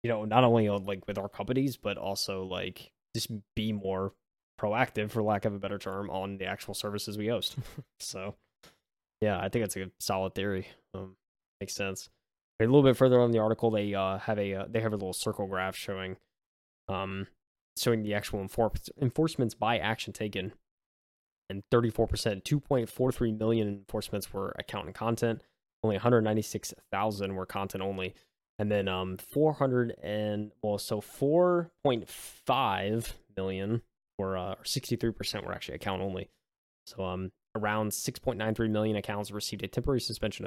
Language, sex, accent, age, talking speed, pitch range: English, male, American, 20-39, 175 wpm, 95-115 Hz